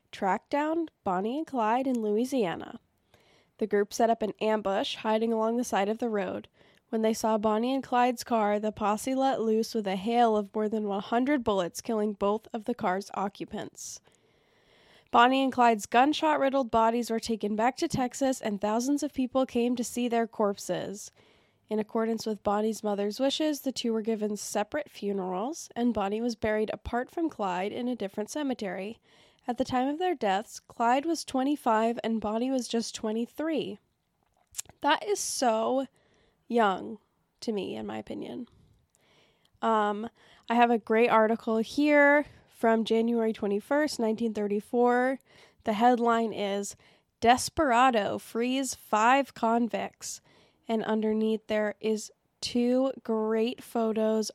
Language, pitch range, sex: English, 215-250 Hz, female